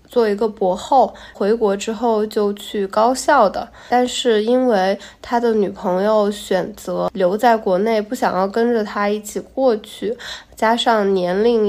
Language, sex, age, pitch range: Chinese, female, 20-39, 200-235 Hz